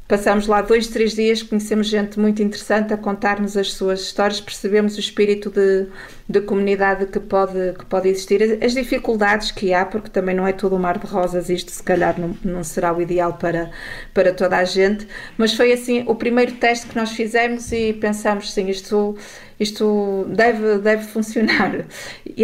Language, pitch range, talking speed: Portuguese, 180-210 Hz, 185 wpm